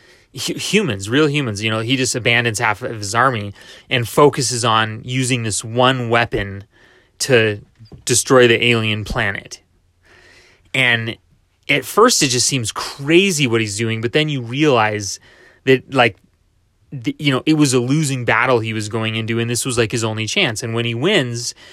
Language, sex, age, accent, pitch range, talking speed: English, male, 20-39, American, 105-130 Hz, 175 wpm